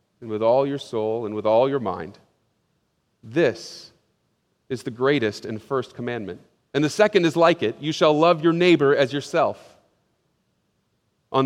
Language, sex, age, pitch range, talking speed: English, male, 40-59, 115-165 Hz, 160 wpm